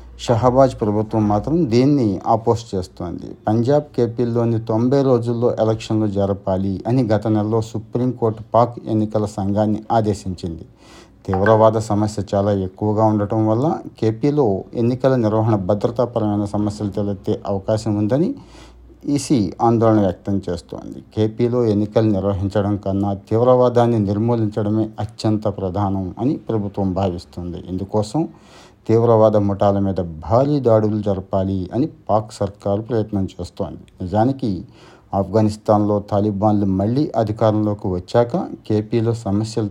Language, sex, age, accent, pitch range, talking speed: Telugu, male, 60-79, native, 100-115 Hz, 105 wpm